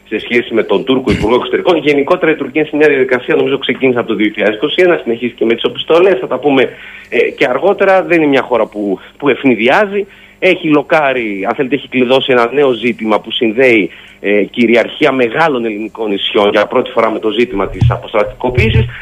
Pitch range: 125-195 Hz